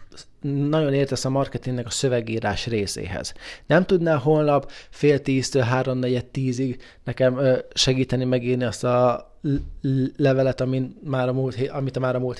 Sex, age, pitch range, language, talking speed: male, 20-39, 125-150 Hz, Hungarian, 145 wpm